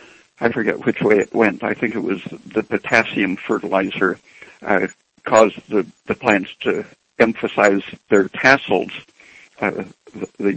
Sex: male